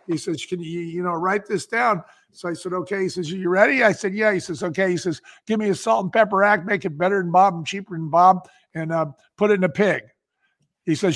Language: English